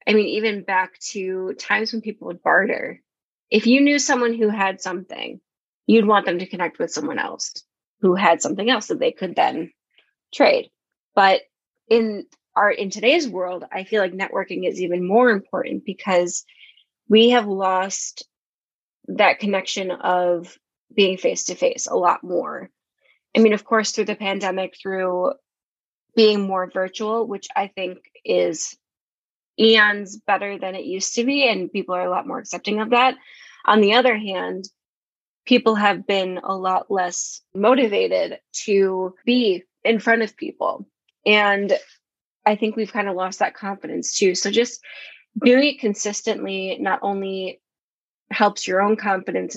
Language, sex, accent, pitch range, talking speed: English, female, American, 190-235 Hz, 155 wpm